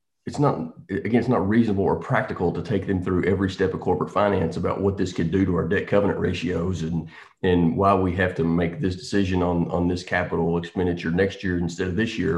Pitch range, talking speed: 85-115 Hz, 230 wpm